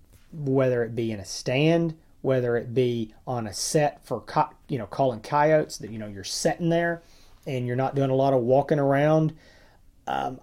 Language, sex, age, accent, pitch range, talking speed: English, male, 30-49, American, 115-140 Hz, 195 wpm